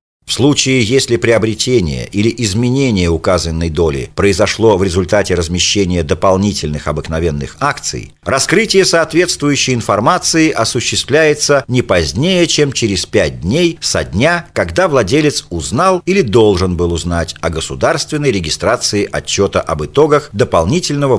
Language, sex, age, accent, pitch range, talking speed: Russian, male, 40-59, native, 90-150 Hz, 115 wpm